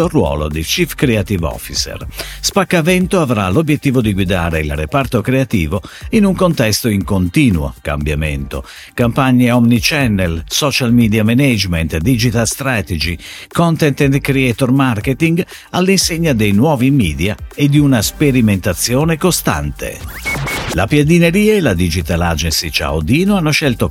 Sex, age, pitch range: male, 50-69, 90-145 Hz